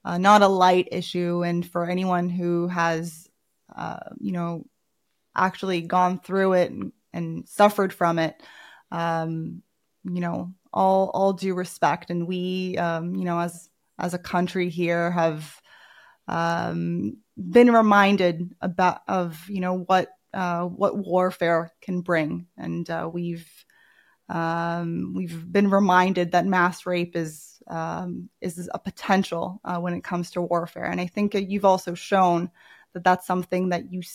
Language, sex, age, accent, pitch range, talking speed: English, female, 20-39, American, 170-195 Hz, 150 wpm